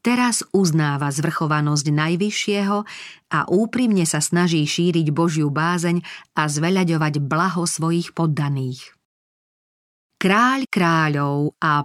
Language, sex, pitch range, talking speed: Slovak, female, 160-195 Hz, 95 wpm